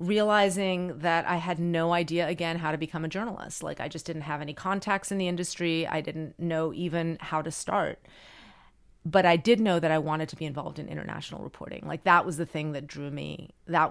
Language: English